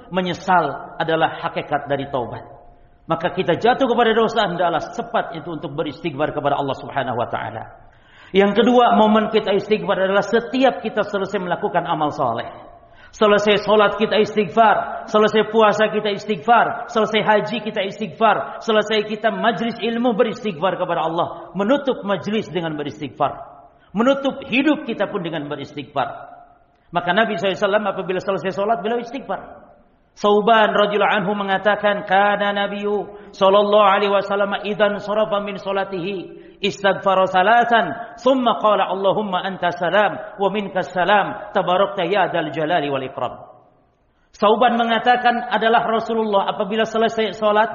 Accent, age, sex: native, 50-69, male